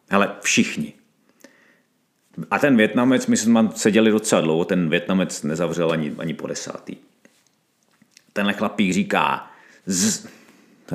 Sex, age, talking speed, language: male, 40-59, 115 wpm, Czech